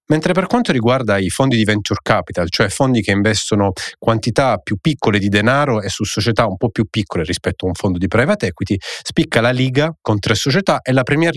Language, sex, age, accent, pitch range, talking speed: Italian, male, 30-49, native, 95-120 Hz, 215 wpm